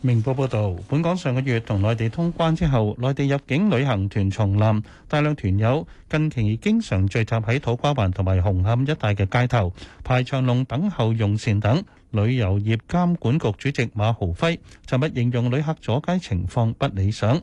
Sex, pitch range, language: male, 105-140 Hz, Chinese